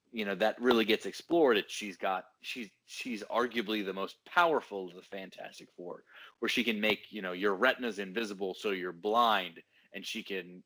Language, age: English, 30-49